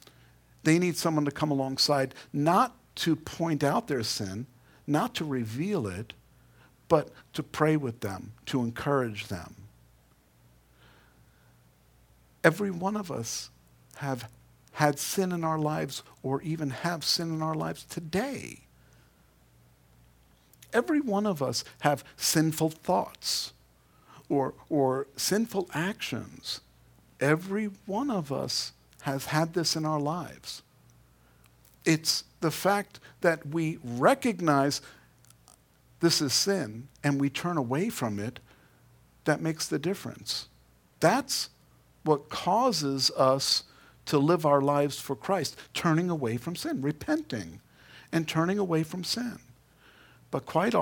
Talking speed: 125 wpm